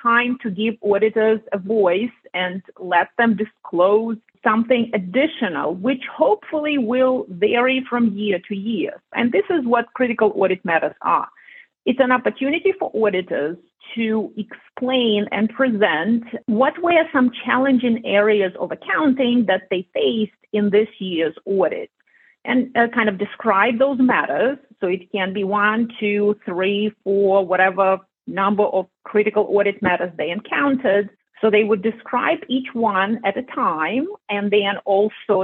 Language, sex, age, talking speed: English, female, 40-59, 145 wpm